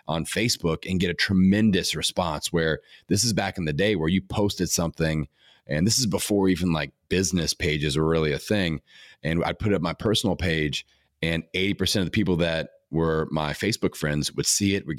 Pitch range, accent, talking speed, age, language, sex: 80-100 Hz, American, 210 wpm, 30-49, English, male